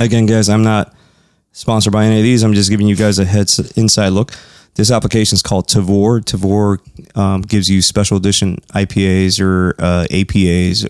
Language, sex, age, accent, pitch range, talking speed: English, male, 20-39, American, 95-110 Hz, 180 wpm